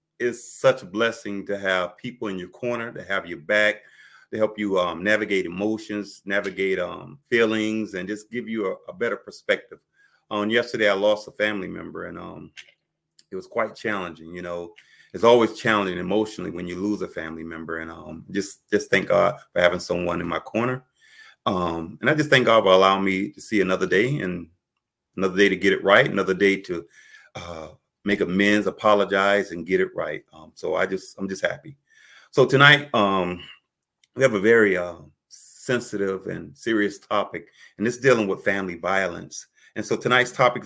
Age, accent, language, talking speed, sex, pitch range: 30-49, American, English, 195 wpm, male, 90-110 Hz